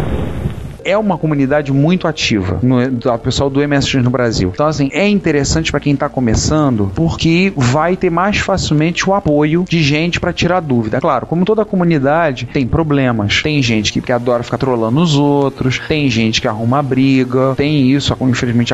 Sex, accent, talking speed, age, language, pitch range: male, Brazilian, 175 wpm, 40-59, Portuguese, 130-165 Hz